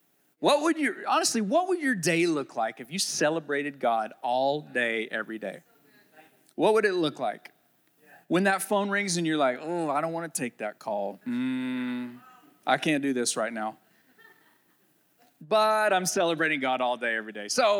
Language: English